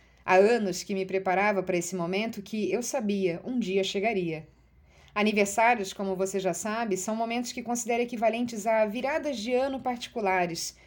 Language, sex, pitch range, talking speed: Portuguese, female, 180-240 Hz, 160 wpm